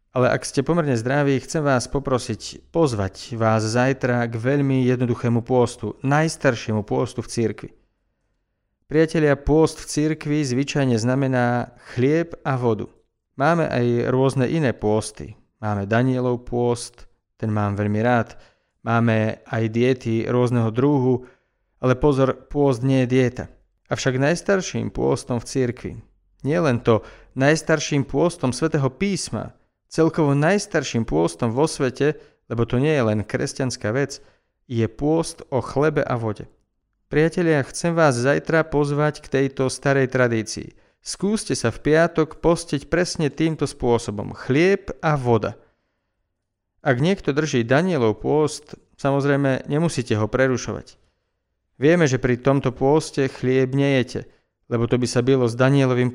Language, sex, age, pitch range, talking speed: Slovak, male, 40-59, 115-145 Hz, 135 wpm